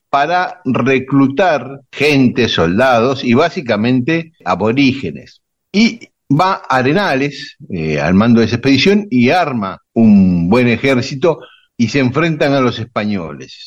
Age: 60-79